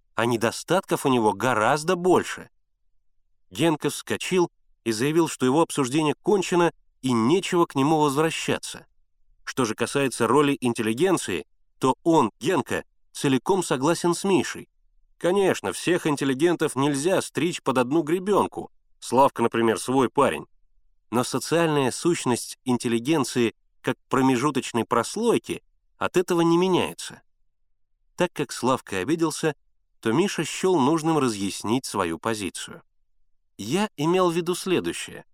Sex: male